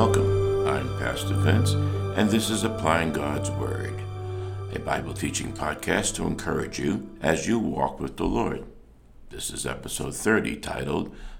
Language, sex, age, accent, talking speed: English, male, 60-79, American, 145 wpm